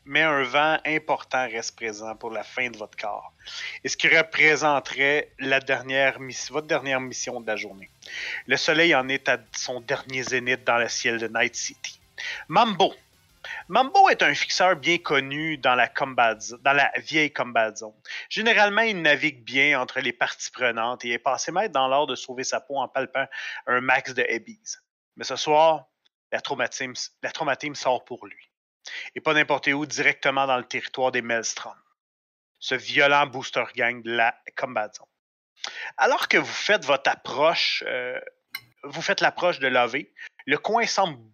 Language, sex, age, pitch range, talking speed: French, male, 30-49, 125-155 Hz, 175 wpm